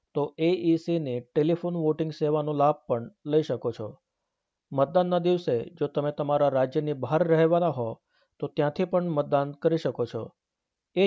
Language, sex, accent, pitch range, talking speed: Gujarati, male, native, 145-170 Hz, 155 wpm